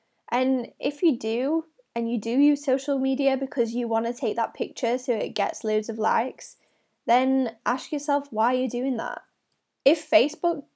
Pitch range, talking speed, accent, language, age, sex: 220-275 Hz, 180 wpm, British, English, 10-29, female